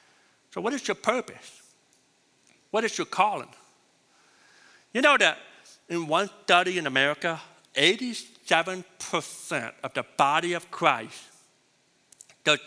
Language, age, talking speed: English, 60-79, 115 wpm